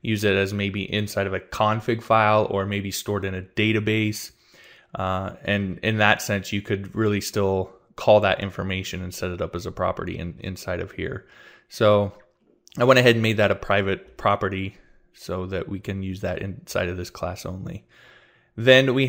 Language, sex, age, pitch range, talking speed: English, male, 20-39, 100-115 Hz, 190 wpm